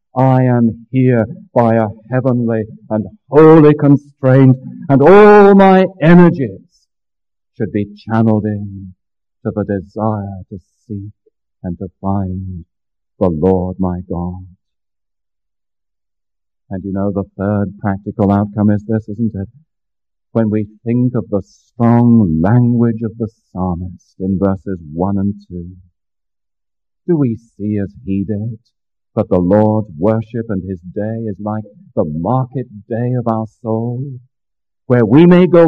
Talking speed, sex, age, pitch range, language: 135 wpm, male, 50-69, 95-135 Hz, English